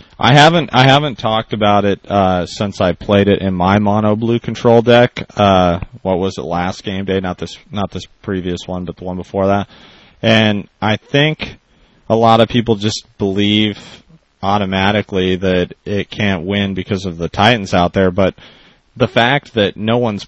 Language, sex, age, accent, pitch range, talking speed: English, male, 30-49, American, 95-110 Hz, 185 wpm